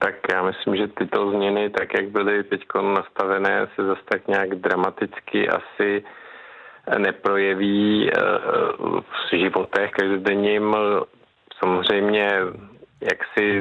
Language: Czech